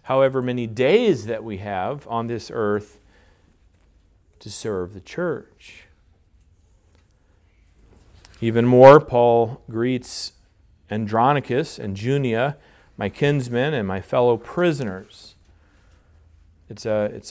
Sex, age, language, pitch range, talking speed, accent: male, 40-59, English, 95-130 Hz, 95 wpm, American